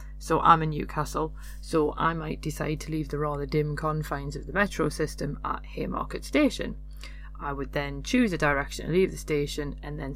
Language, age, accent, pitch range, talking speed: English, 30-49, British, 140-160 Hz, 195 wpm